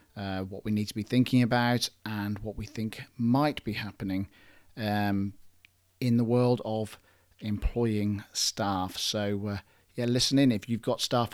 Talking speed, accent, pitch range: 165 wpm, British, 100-120 Hz